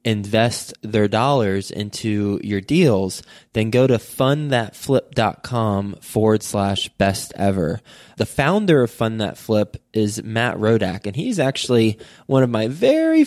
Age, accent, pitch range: 20-39, American, 100-130 Hz